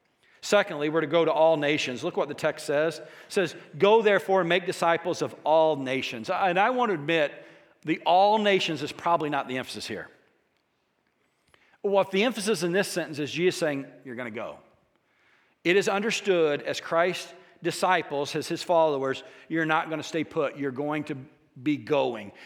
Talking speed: 185 wpm